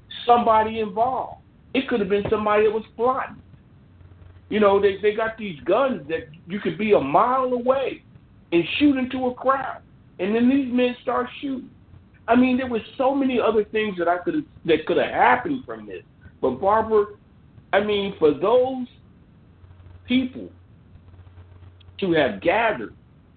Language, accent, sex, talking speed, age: English, American, male, 160 wpm, 60-79